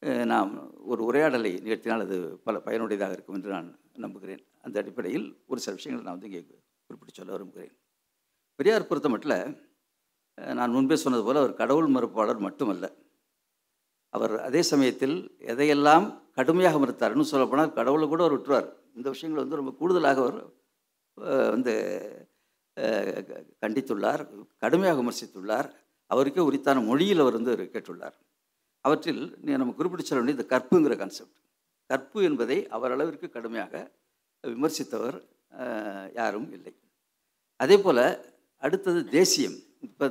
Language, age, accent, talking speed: Tamil, 60-79, native, 120 wpm